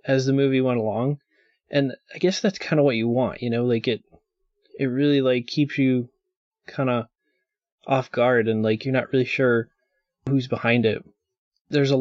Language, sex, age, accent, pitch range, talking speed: English, male, 20-39, American, 120-140 Hz, 190 wpm